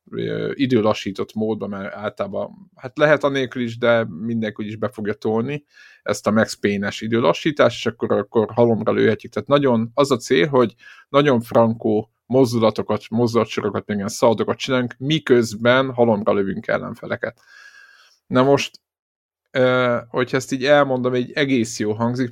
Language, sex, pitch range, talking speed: Hungarian, male, 115-130 Hz, 140 wpm